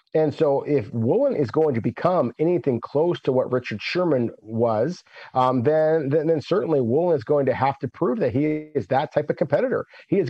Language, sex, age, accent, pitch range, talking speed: English, male, 50-69, American, 120-155 Hz, 210 wpm